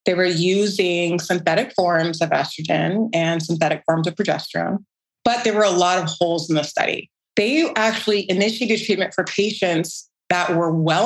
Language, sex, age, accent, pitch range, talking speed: English, female, 30-49, American, 165-195 Hz, 170 wpm